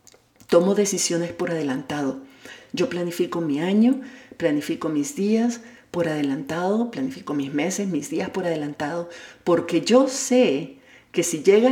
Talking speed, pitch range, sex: 135 wpm, 170-230 Hz, female